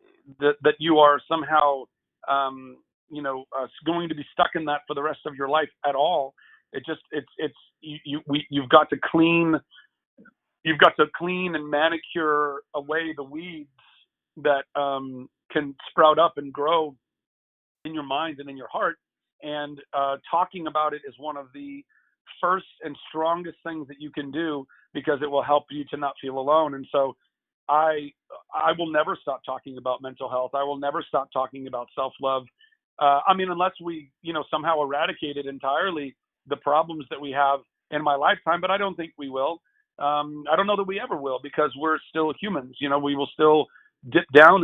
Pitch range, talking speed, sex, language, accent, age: 140-160 Hz, 190 wpm, male, English, American, 40-59